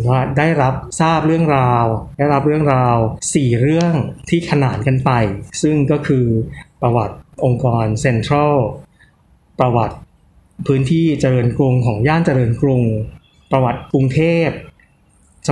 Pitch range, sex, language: 120-150 Hz, male, Thai